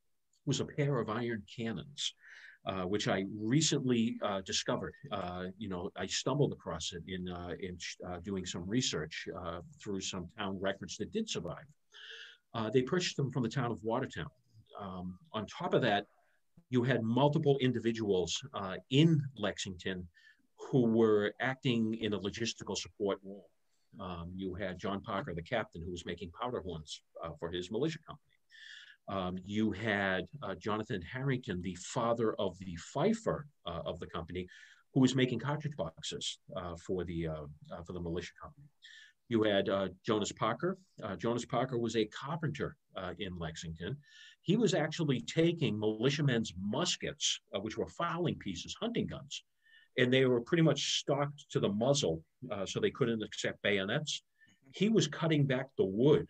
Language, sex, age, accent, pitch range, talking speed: English, male, 50-69, American, 95-140 Hz, 165 wpm